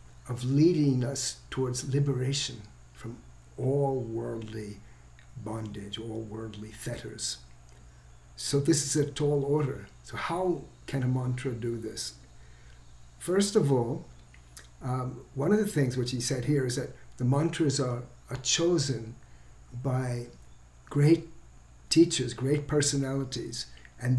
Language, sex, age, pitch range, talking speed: English, male, 60-79, 115-140 Hz, 120 wpm